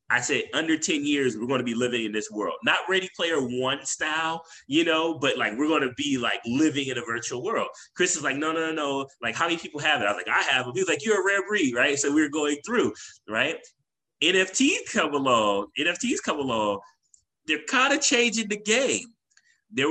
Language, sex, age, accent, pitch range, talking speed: English, male, 30-49, American, 140-230 Hz, 230 wpm